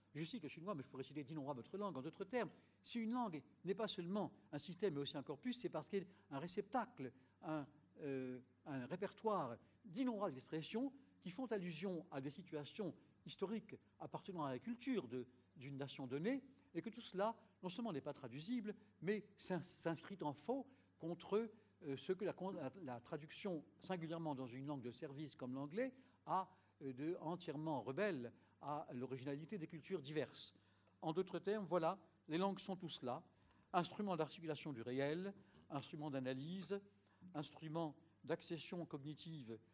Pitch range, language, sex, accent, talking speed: 140-190 Hz, French, male, French, 170 wpm